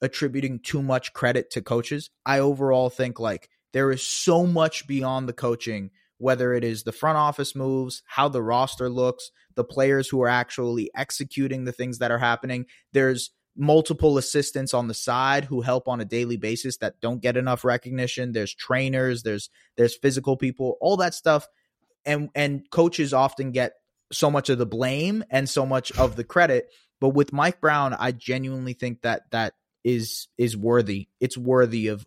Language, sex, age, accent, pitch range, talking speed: English, male, 20-39, American, 125-155 Hz, 180 wpm